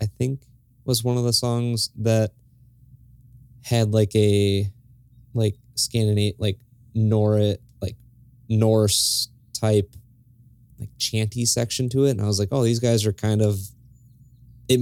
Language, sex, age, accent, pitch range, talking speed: English, male, 20-39, American, 105-125 Hz, 140 wpm